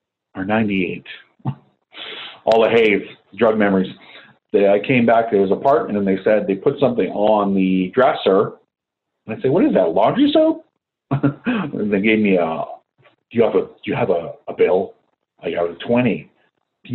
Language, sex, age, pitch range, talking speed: English, male, 40-59, 95-125 Hz, 180 wpm